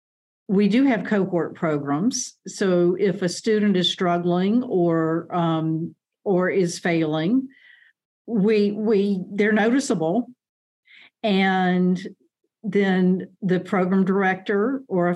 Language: English